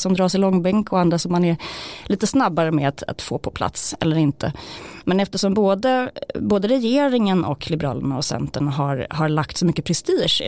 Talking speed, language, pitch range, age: 195 wpm, Swedish, 145-185 Hz, 30-49